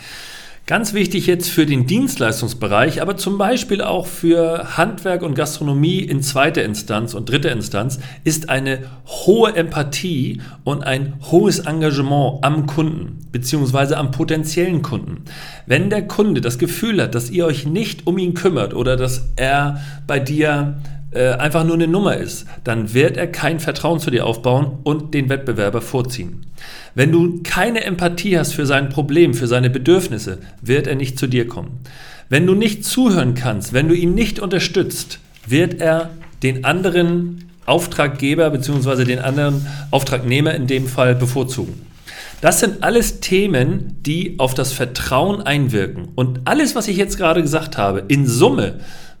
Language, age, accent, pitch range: German, 40-59, German, 130-170 Hz